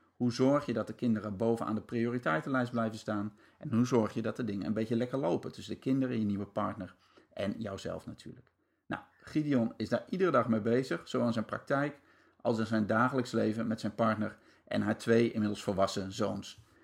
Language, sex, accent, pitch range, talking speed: Dutch, male, Dutch, 105-125 Hz, 205 wpm